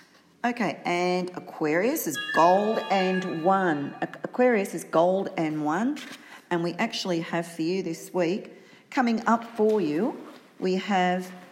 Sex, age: female, 40-59